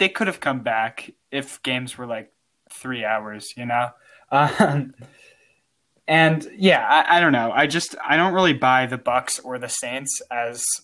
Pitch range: 120-140 Hz